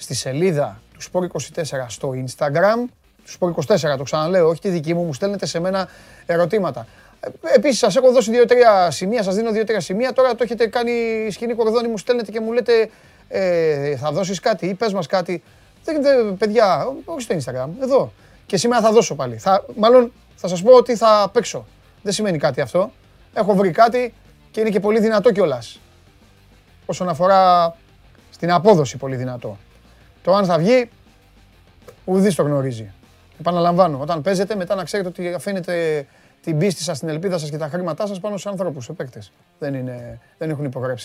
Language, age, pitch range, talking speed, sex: Greek, 30-49, 140-200 Hz, 160 wpm, male